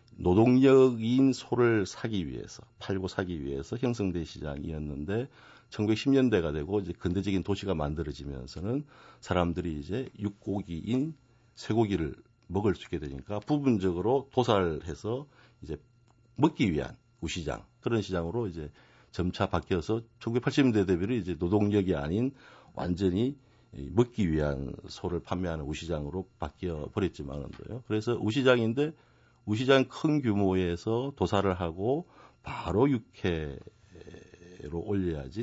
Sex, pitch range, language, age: male, 85-120 Hz, Korean, 60-79